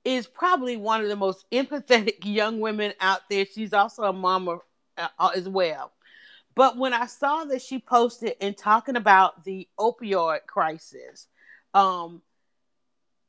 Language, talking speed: English, 140 wpm